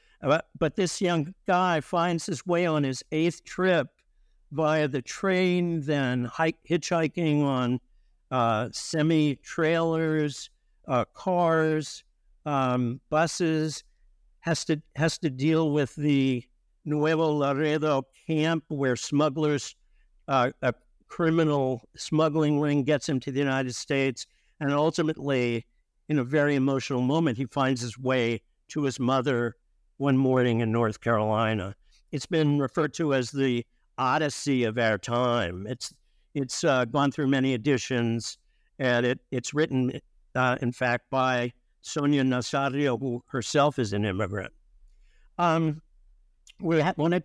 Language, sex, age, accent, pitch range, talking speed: English, male, 60-79, American, 130-160 Hz, 130 wpm